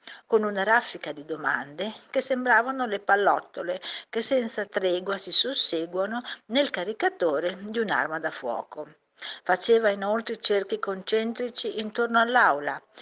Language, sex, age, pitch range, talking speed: Italian, female, 50-69, 195-270 Hz, 120 wpm